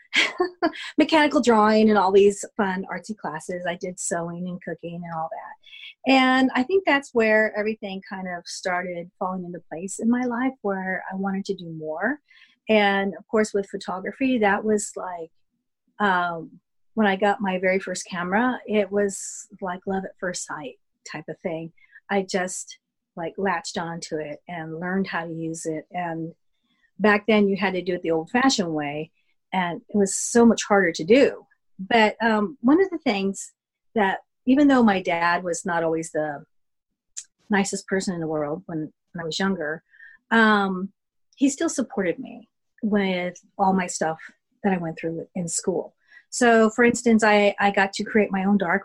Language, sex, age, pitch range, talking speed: English, female, 40-59, 175-225 Hz, 180 wpm